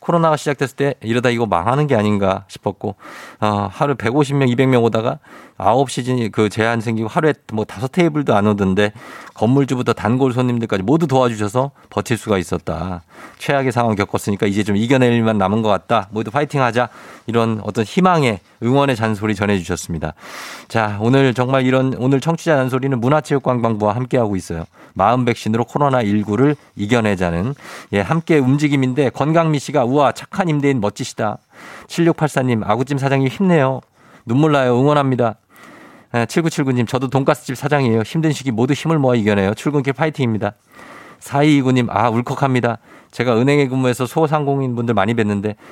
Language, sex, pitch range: Korean, male, 110-140 Hz